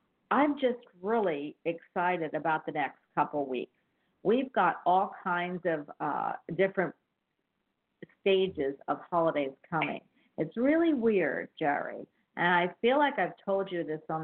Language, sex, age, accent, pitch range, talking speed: English, female, 50-69, American, 165-210 Hz, 140 wpm